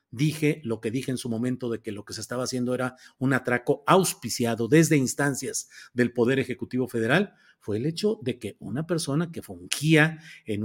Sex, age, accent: male, 50-69, Mexican